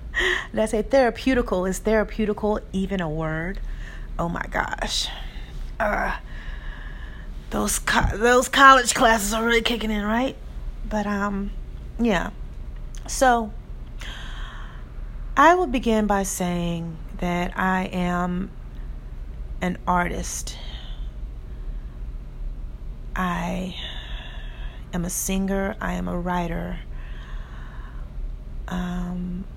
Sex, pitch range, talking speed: female, 160-195 Hz, 95 wpm